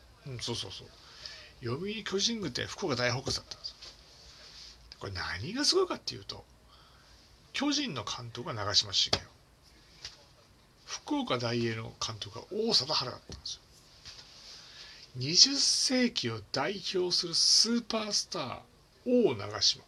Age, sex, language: 60-79, male, Japanese